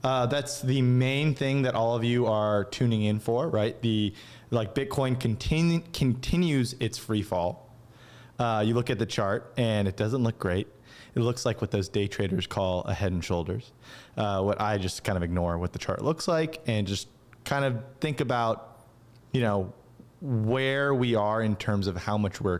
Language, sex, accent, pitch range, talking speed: English, male, American, 105-130 Hz, 195 wpm